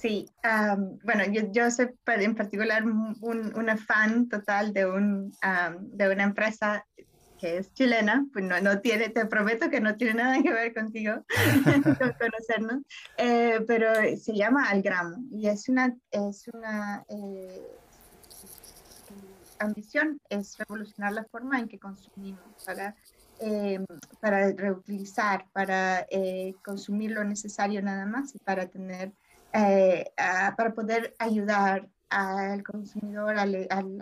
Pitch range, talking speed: 200-230 Hz, 140 wpm